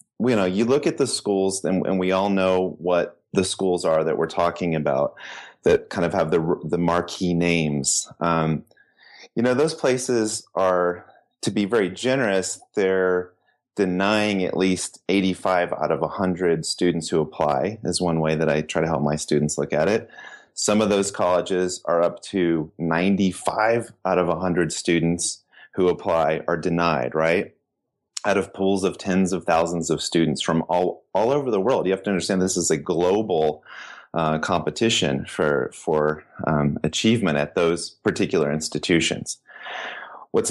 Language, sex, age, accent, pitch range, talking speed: English, male, 30-49, American, 85-105 Hz, 165 wpm